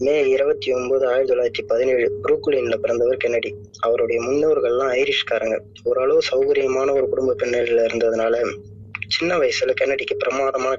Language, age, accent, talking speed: Tamil, 20-39, native, 120 wpm